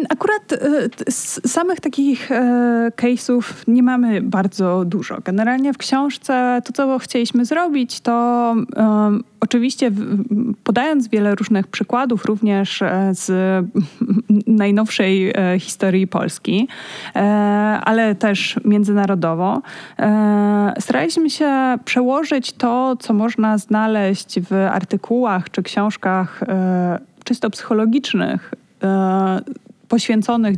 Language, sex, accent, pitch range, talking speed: Polish, female, native, 205-250 Hz, 100 wpm